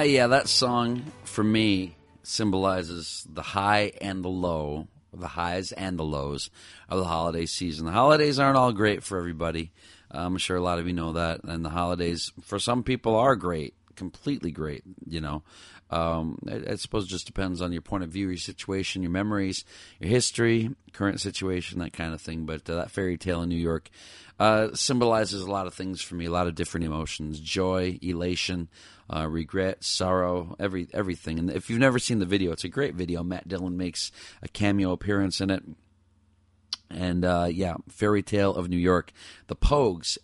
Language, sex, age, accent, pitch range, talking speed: English, male, 40-59, American, 85-105 Hz, 190 wpm